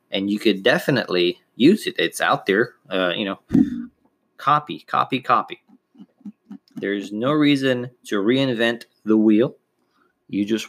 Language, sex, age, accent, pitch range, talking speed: English, male, 30-49, American, 110-165 Hz, 135 wpm